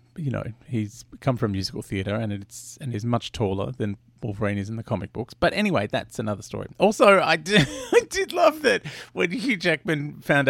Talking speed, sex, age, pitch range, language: 205 wpm, male, 30-49, 110-150 Hz, English